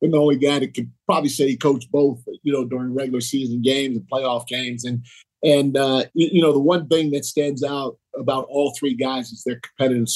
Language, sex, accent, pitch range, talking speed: English, male, American, 125-140 Hz, 225 wpm